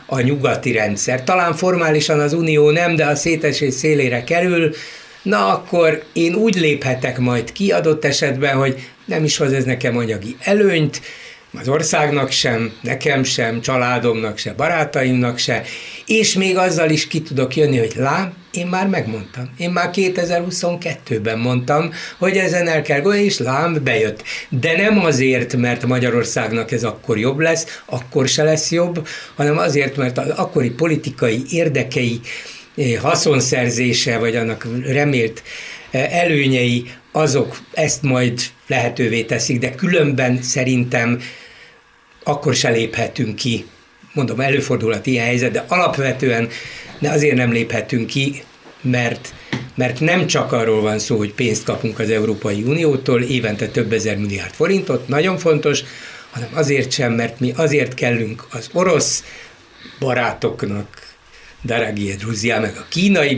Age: 60-79